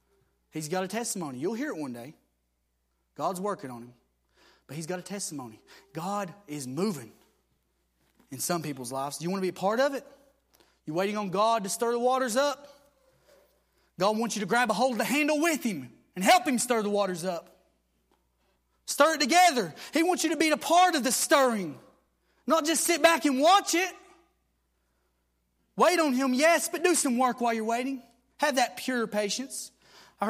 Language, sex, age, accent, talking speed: English, male, 30-49, American, 195 wpm